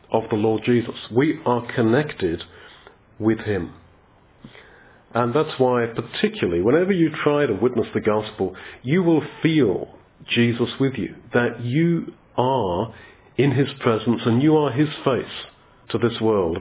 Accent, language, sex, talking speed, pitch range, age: British, English, male, 145 wpm, 110-135 Hz, 40-59